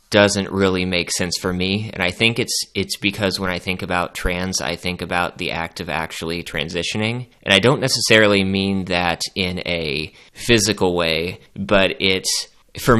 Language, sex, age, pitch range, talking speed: English, male, 20-39, 85-95 Hz, 175 wpm